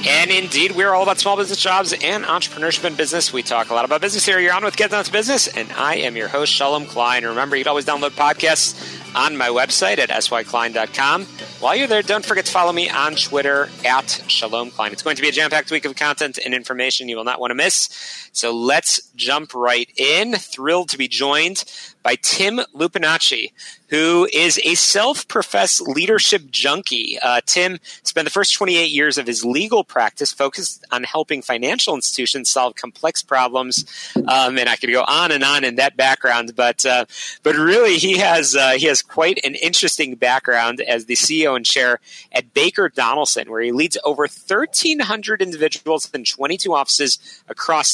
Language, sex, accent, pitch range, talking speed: English, male, American, 130-190 Hz, 190 wpm